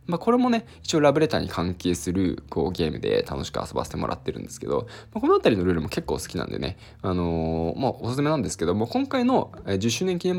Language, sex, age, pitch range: Japanese, male, 20-39, 80-115 Hz